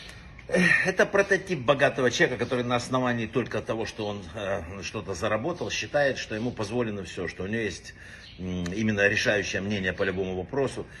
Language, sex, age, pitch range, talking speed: Russian, male, 60-79, 105-140 Hz, 165 wpm